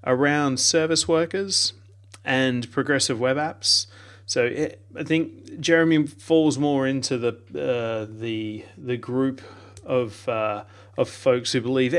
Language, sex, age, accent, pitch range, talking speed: English, male, 30-49, Australian, 110-145 Hz, 130 wpm